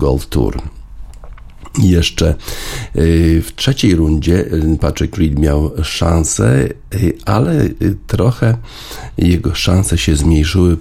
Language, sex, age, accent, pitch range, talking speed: Polish, male, 50-69, native, 70-90 Hz, 90 wpm